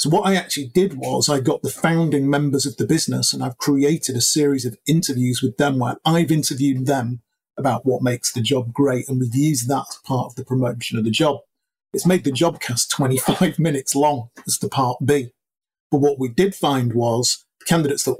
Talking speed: 220 wpm